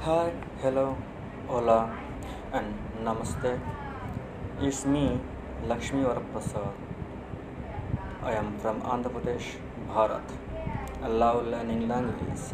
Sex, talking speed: male, 90 wpm